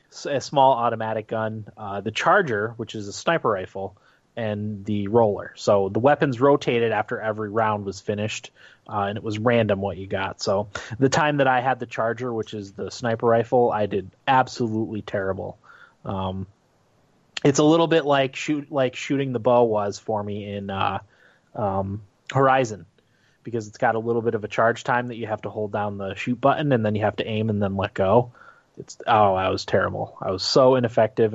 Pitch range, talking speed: 100-125 Hz, 200 wpm